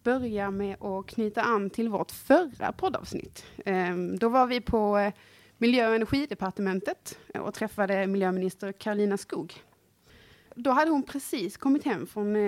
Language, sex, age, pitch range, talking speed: Swedish, female, 30-49, 190-240 Hz, 135 wpm